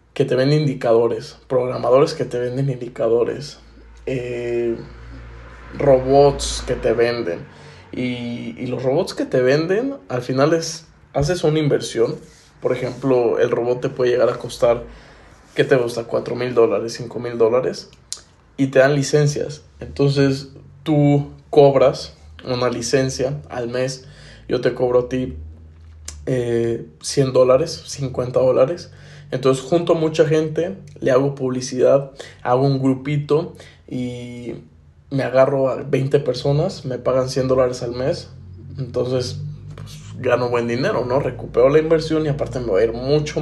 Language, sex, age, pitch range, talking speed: Spanish, male, 20-39, 125-140 Hz, 145 wpm